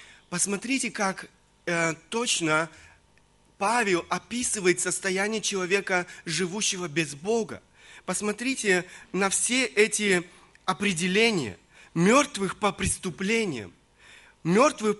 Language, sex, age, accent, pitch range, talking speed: Russian, male, 30-49, native, 170-215 Hz, 80 wpm